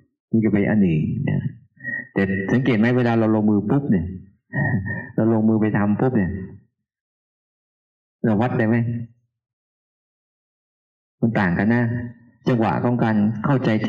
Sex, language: male, Thai